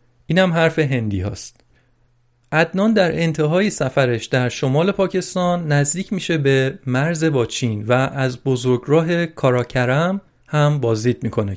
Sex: male